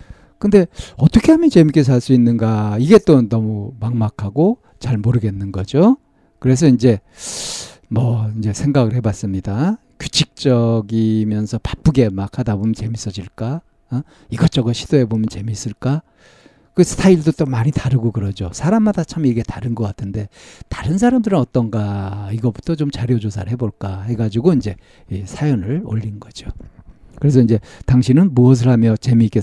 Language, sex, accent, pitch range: Korean, male, native, 110-150 Hz